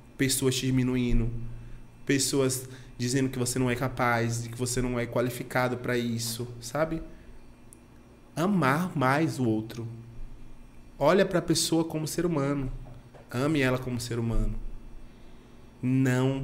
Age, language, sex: 20-39, Portuguese, male